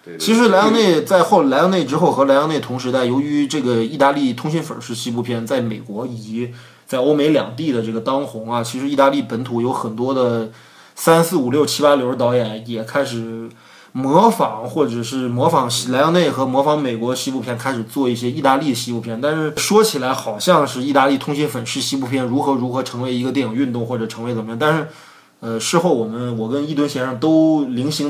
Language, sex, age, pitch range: Chinese, male, 20-39, 120-150 Hz